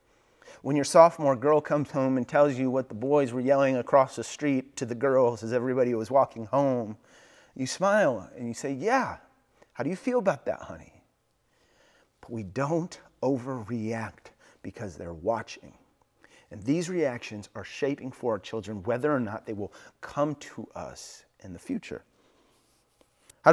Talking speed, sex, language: 165 wpm, male, English